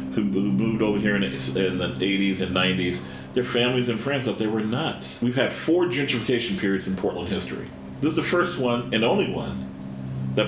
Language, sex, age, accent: English, male, 40-59, American